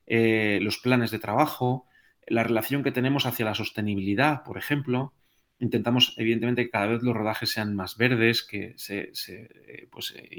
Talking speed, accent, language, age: 175 wpm, Spanish, Spanish, 30-49